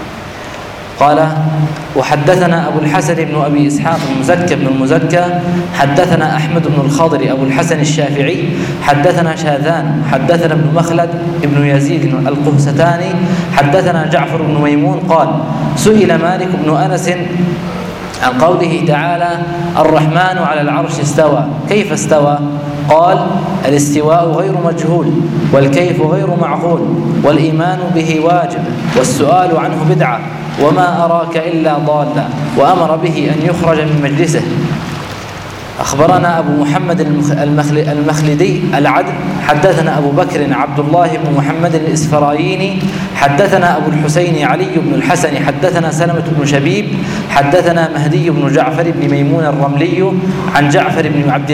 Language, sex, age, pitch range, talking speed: Arabic, male, 20-39, 150-175 Hz, 120 wpm